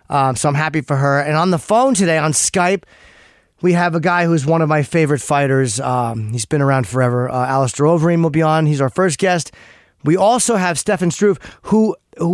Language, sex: English, male